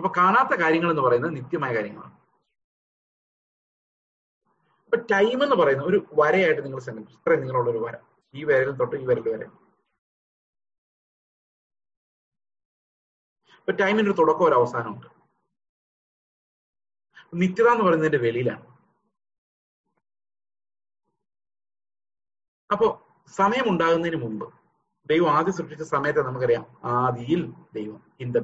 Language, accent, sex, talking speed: Malayalam, native, male, 95 wpm